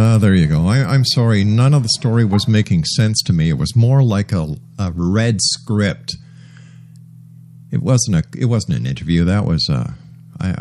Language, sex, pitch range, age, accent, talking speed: English, male, 100-145 Hz, 50-69, American, 200 wpm